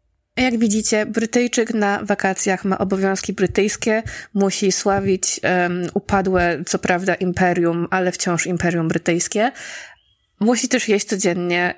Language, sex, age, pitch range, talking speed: Polish, female, 20-39, 175-210 Hz, 115 wpm